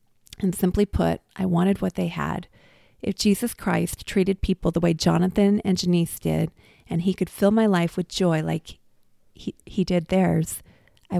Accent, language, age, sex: American, English, 30-49, female